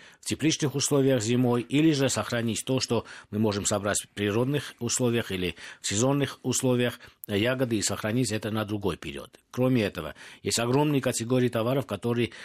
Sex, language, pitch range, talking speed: male, Russian, 100-120 Hz, 160 wpm